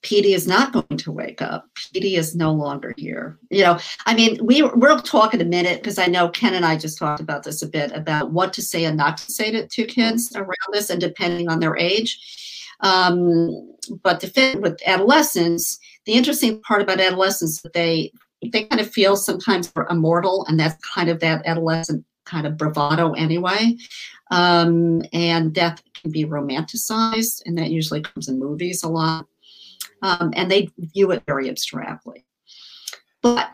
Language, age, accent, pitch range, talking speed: English, 50-69, American, 160-200 Hz, 185 wpm